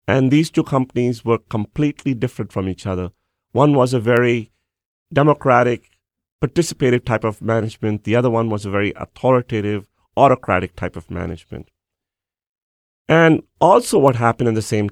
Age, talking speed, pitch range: 30-49, 150 wpm, 100-130 Hz